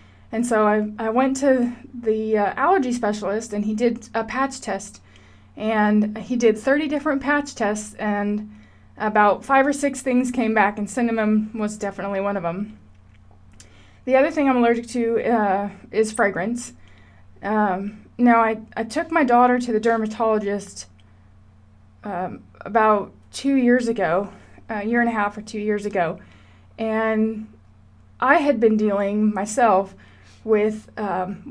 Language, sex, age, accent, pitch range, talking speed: English, female, 20-39, American, 200-245 Hz, 150 wpm